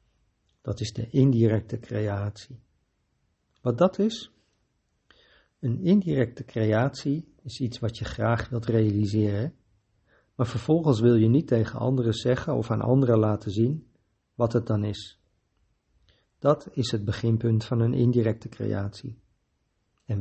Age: 50-69